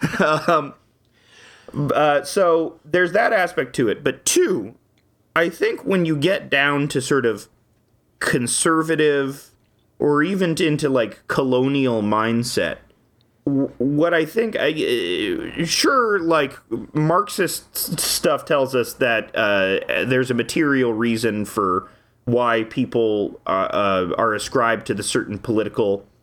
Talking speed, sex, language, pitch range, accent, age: 125 wpm, male, English, 115-160 Hz, American, 30-49